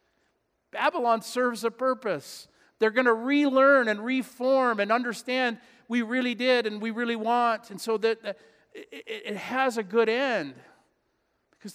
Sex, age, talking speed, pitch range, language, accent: male, 50-69, 145 wpm, 140-220 Hz, English, American